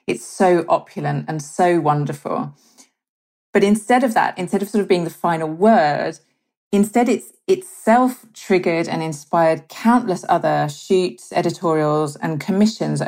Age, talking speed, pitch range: 40-59, 140 wpm, 150-195 Hz